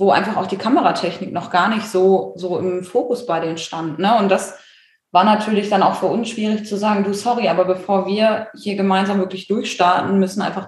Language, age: German, 20-39